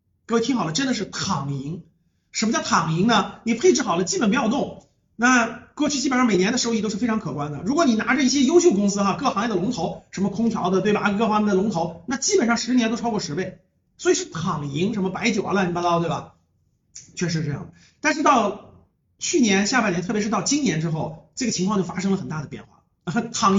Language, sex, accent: Chinese, male, native